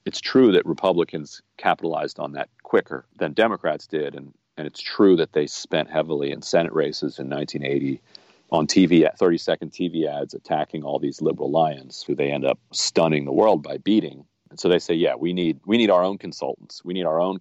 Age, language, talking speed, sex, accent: 40-59, English, 205 wpm, male, American